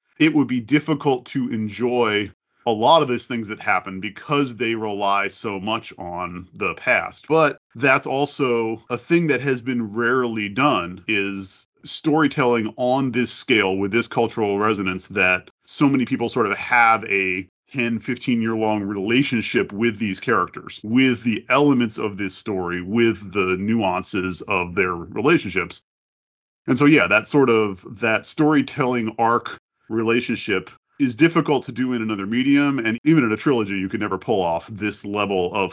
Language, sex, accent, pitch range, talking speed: English, male, American, 100-130 Hz, 165 wpm